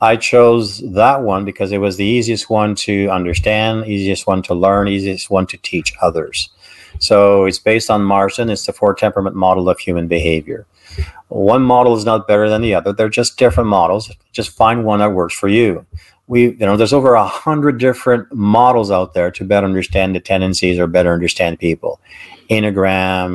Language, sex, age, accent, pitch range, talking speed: English, male, 50-69, American, 90-110 Hz, 190 wpm